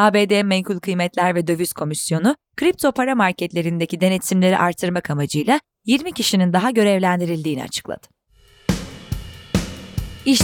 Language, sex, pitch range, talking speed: Turkish, female, 175-240 Hz, 105 wpm